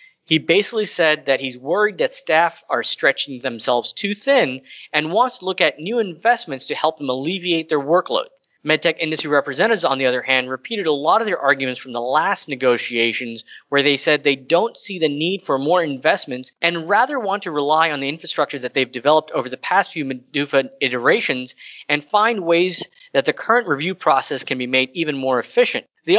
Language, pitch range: English, 135-195 Hz